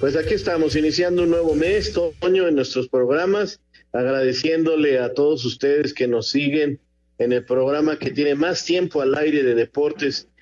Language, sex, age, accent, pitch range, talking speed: Spanish, male, 50-69, Mexican, 125-160 Hz, 165 wpm